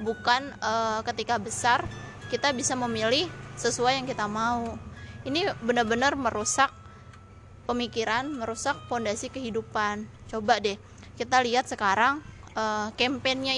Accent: native